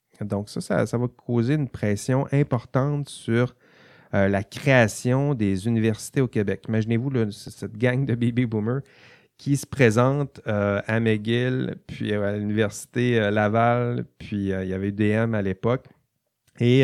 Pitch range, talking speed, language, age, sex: 100-125 Hz, 155 wpm, French, 30-49, male